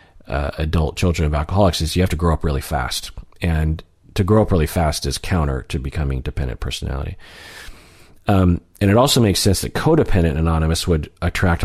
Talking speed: 185 wpm